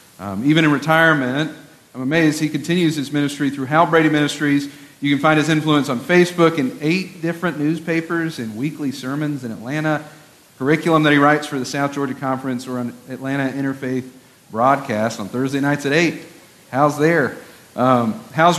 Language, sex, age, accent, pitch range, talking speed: English, male, 40-59, American, 125-155 Hz, 170 wpm